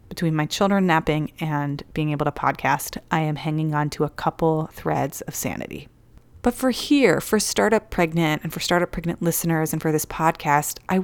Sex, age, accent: female, 30-49, American